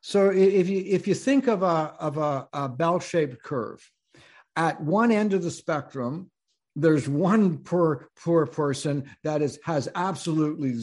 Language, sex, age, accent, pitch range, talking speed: English, male, 60-79, American, 135-175 Hz, 155 wpm